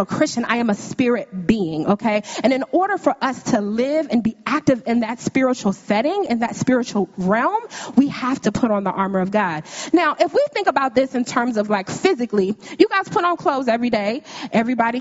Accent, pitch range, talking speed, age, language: American, 205-290 Hz, 210 wpm, 20-39, English